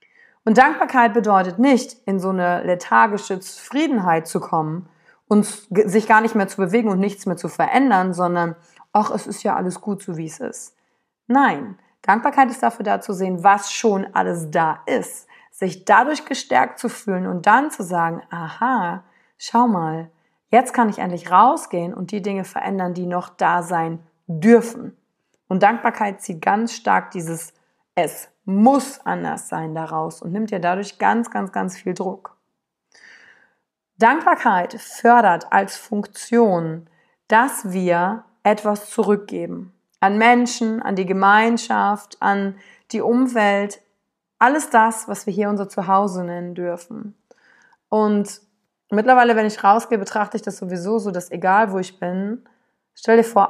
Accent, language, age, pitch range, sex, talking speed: German, German, 30-49, 180-230 Hz, female, 150 wpm